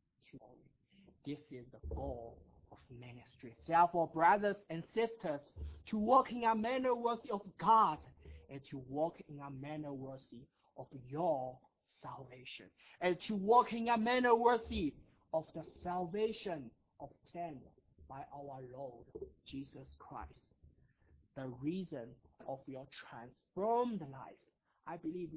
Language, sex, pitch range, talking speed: English, male, 130-185 Hz, 125 wpm